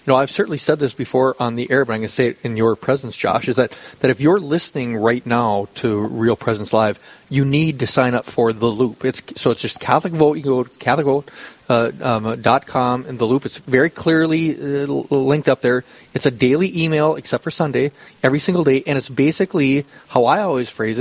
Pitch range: 125-155 Hz